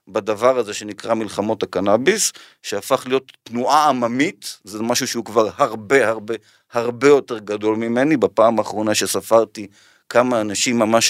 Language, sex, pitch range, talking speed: Hebrew, male, 110-150 Hz, 135 wpm